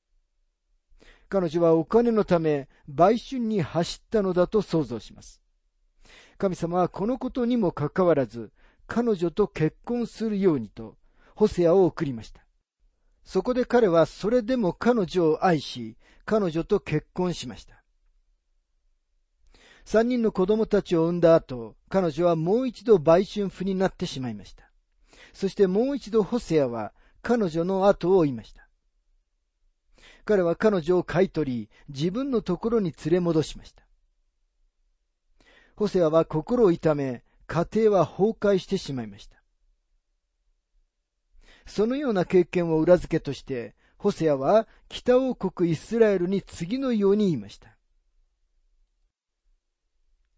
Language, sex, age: Japanese, male, 50-69